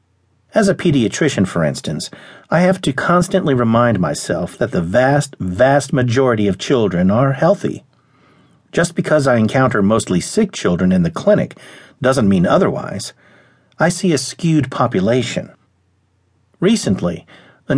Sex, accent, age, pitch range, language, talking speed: male, American, 50-69, 105-155 Hz, English, 135 wpm